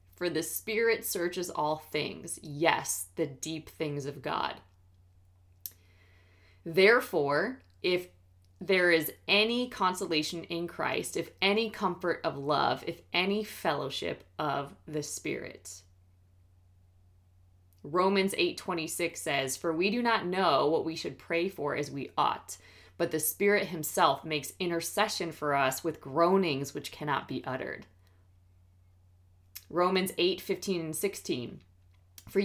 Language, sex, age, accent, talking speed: English, female, 20-39, American, 125 wpm